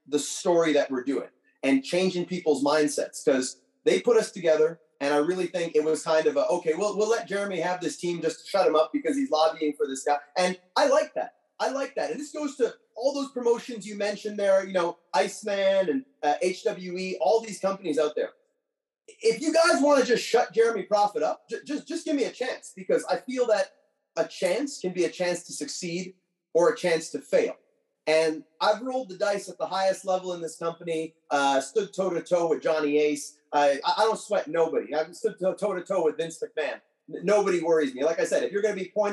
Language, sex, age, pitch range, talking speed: English, male, 30-49, 160-225 Hz, 220 wpm